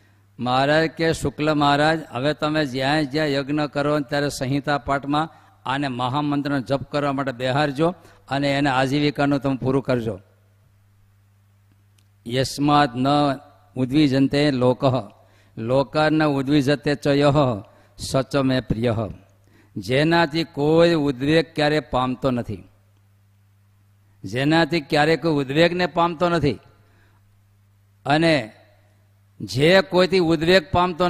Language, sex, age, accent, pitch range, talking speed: Gujarati, male, 50-69, native, 105-150 Hz, 90 wpm